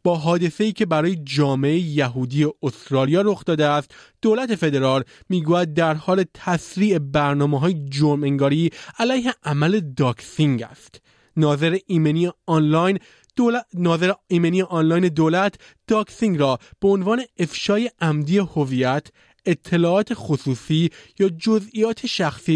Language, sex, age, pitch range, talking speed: Persian, male, 30-49, 145-190 Hz, 110 wpm